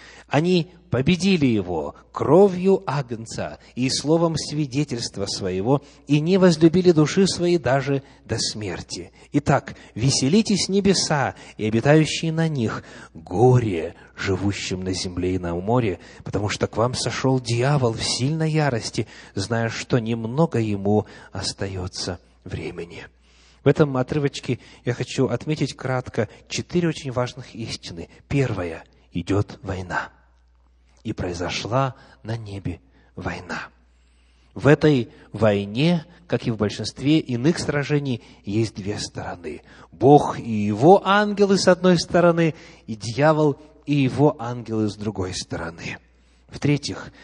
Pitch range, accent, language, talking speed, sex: 100-150 Hz, native, Russian, 120 wpm, male